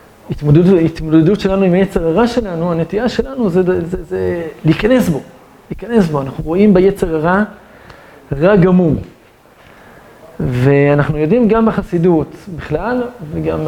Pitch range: 160-215 Hz